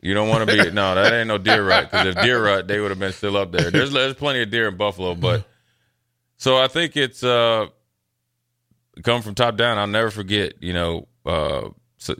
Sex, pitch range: male, 90-115 Hz